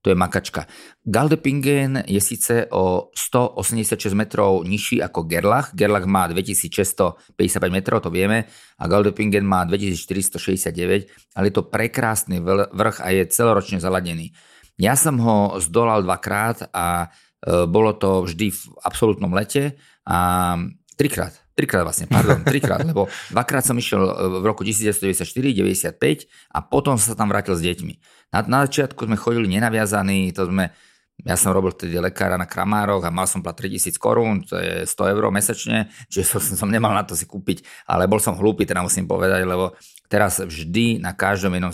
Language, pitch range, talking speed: Slovak, 90-105 Hz, 155 wpm